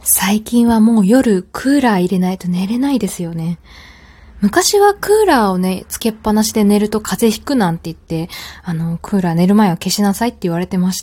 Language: Japanese